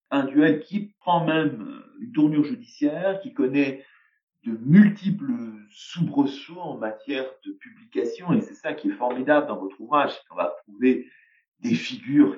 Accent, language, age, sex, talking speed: French, French, 50-69, male, 150 wpm